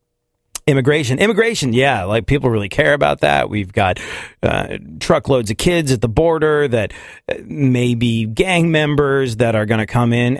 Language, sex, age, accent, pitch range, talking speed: English, male, 30-49, American, 105-135 Hz, 165 wpm